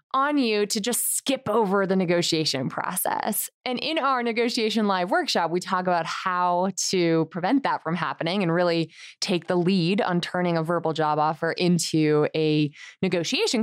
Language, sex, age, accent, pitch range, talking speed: English, female, 20-39, American, 175-235 Hz, 165 wpm